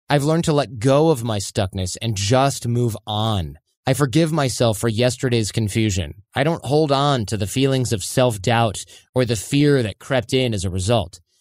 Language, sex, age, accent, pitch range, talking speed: English, male, 20-39, American, 105-145 Hz, 190 wpm